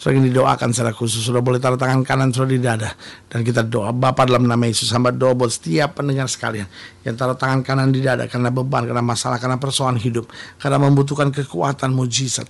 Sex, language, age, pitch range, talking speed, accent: male, Indonesian, 50-69, 110-130 Hz, 200 wpm, native